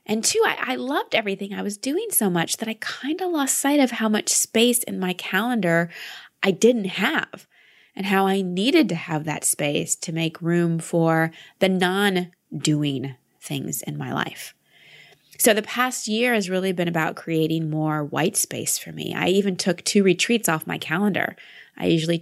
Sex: female